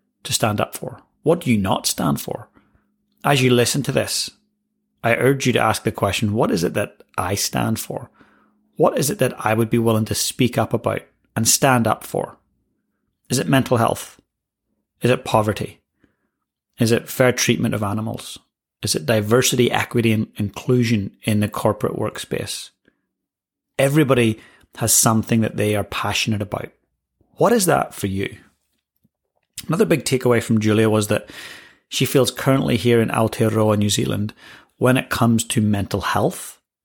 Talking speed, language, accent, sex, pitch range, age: 165 wpm, English, British, male, 105-125 Hz, 30-49